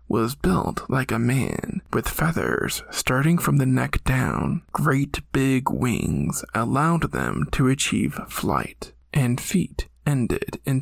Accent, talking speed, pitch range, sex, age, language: American, 135 wpm, 125-160 Hz, male, 20-39, English